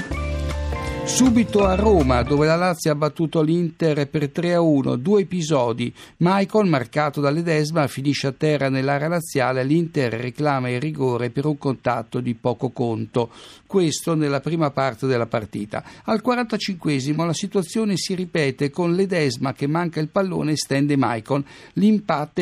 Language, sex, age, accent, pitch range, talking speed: Italian, male, 60-79, native, 130-170 Hz, 140 wpm